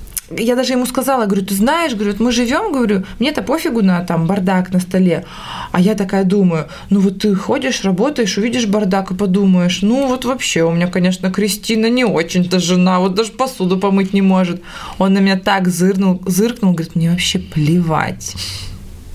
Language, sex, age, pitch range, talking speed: Russian, female, 20-39, 185-225 Hz, 170 wpm